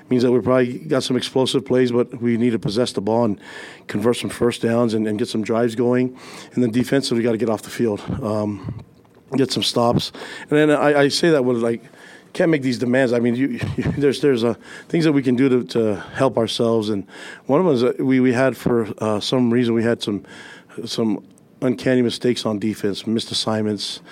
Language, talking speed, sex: English, 225 wpm, male